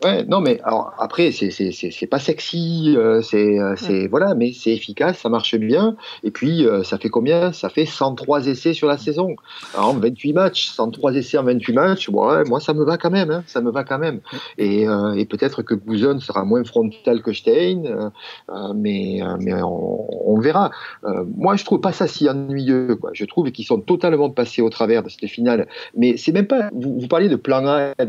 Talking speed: 220 wpm